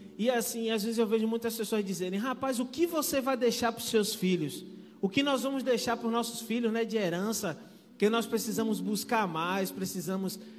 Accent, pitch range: Brazilian, 195-240 Hz